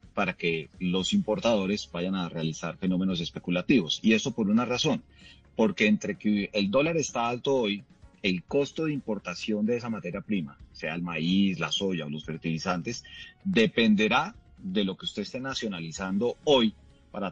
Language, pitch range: Spanish, 90-120 Hz